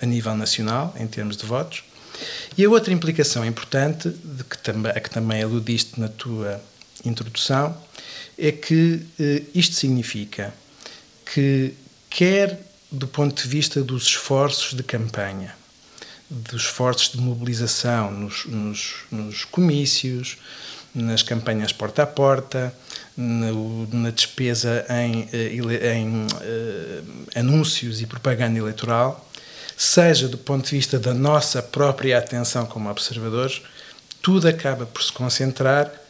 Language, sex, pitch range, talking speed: Portuguese, male, 115-140 Hz, 115 wpm